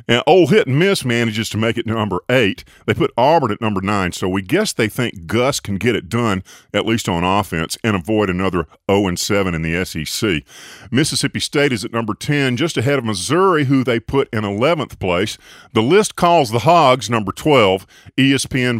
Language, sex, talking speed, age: English, male, 200 wpm, 50-69